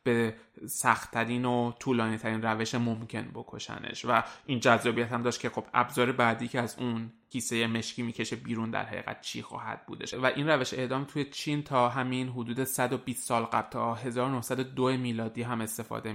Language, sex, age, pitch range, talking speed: Persian, male, 20-39, 115-130 Hz, 170 wpm